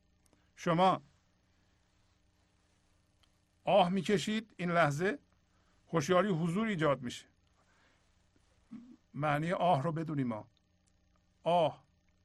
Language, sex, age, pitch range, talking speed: Persian, male, 60-79, 95-155 Hz, 75 wpm